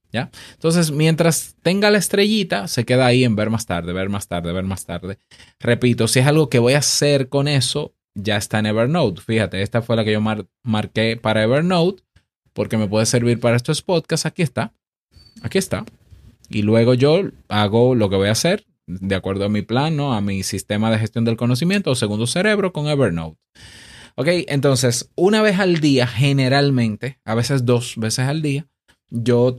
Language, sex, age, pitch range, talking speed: Spanish, male, 20-39, 105-140 Hz, 195 wpm